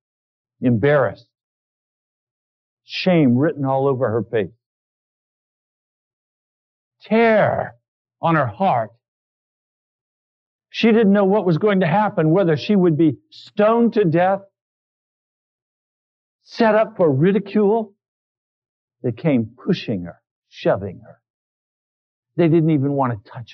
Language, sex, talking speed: English, male, 105 wpm